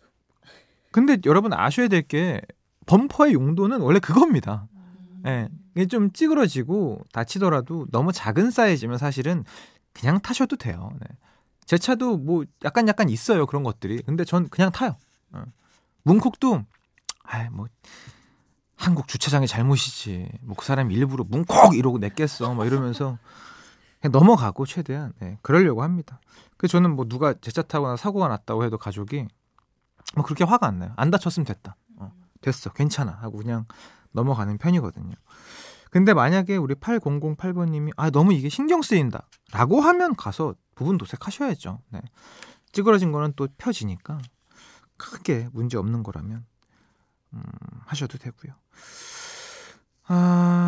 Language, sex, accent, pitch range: Korean, male, native, 115-185 Hz